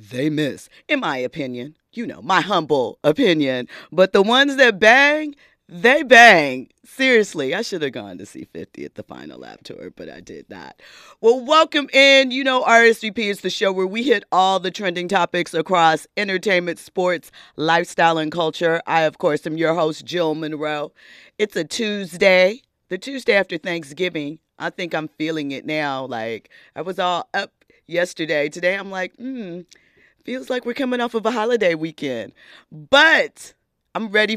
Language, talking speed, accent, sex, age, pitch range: English, 175 wpm, American, female, 40-59, 160-230 Hz